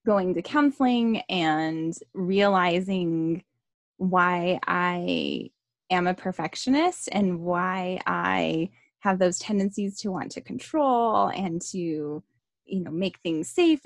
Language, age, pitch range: English, 20-39, 180-215 Hz